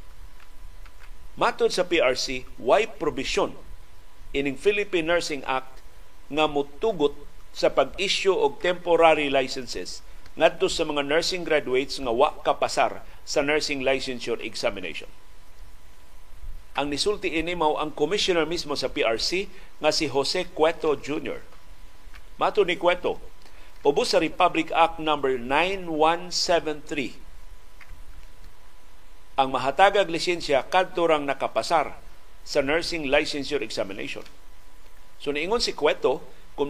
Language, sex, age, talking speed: Filipino, male, 50-69, 110 wpm